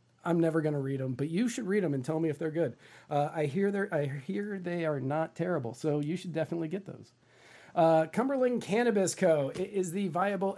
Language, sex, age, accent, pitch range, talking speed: English, male, 40-59, American, 140-185 Hz, 215 wpm